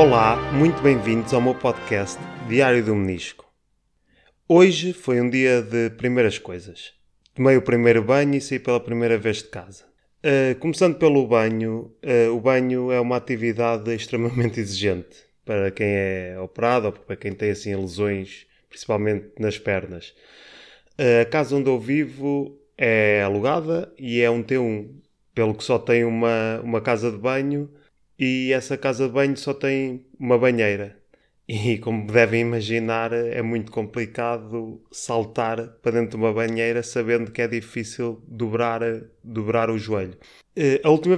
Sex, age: male, 20-39